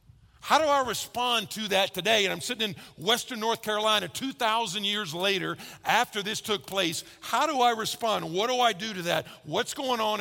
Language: English